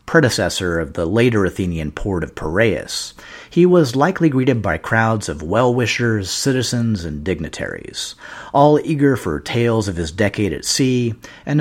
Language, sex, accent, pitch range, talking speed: English, male, American, 95-140 Hz, 150 wpm